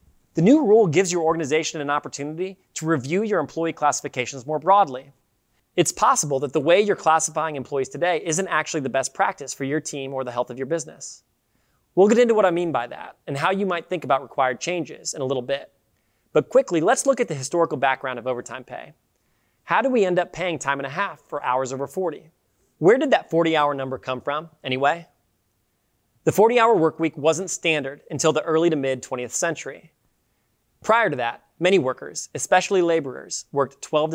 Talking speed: 205 wpm